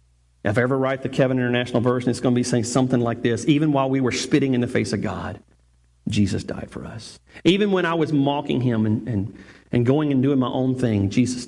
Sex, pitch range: male, 100-170 Hz